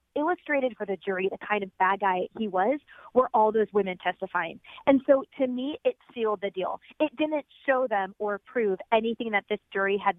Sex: female